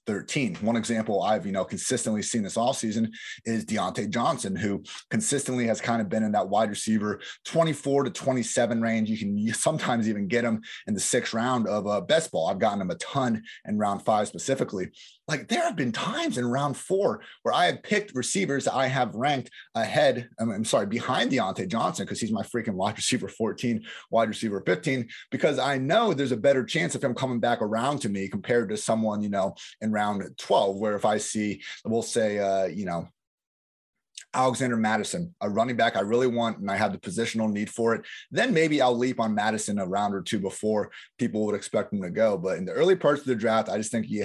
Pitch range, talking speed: 105-130 Hz, 215 wpm